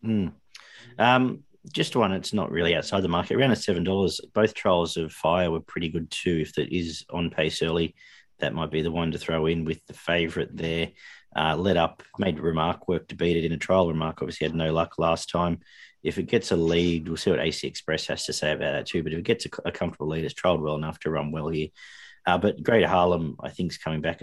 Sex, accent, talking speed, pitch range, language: male, Australian, 245 wpm, 80-105 Hz, English